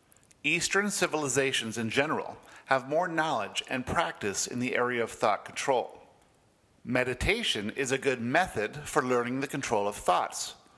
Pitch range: 115-150 Hz